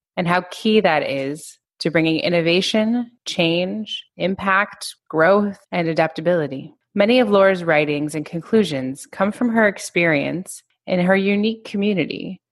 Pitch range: 155-195 Hz